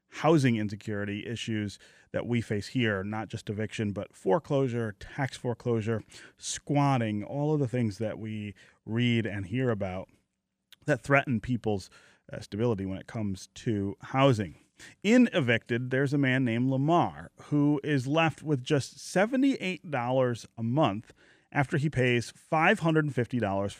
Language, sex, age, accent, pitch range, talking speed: English, male, 30-49, American, 110-145 Hz, 135 wpm